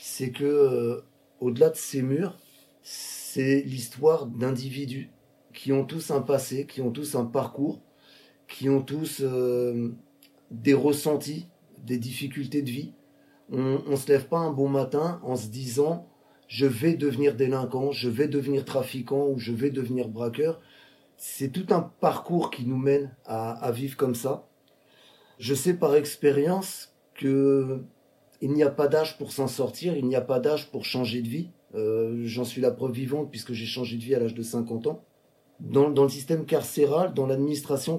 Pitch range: 130-145 Hz